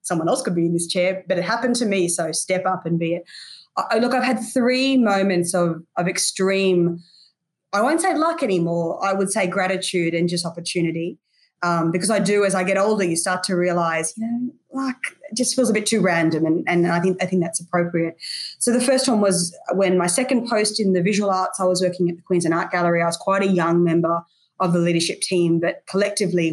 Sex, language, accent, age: female, English, Australian, 20-39